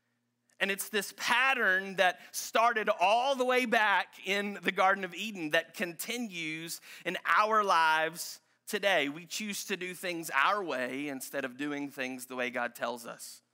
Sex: male